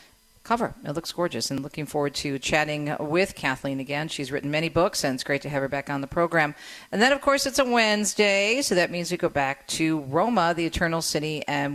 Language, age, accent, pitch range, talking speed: English, 50-69, American, 140-170 Hz, 230 wpm